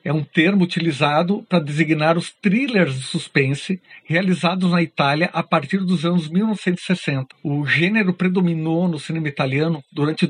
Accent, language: Brazilian, Portuguese